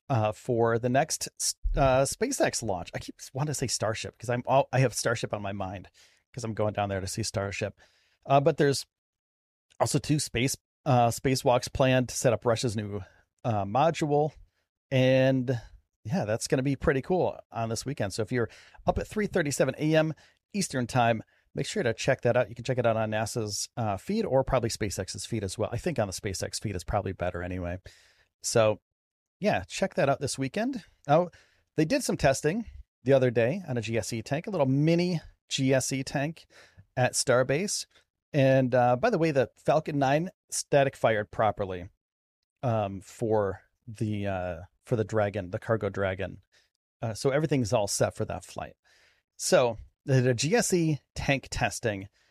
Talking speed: 180 wpm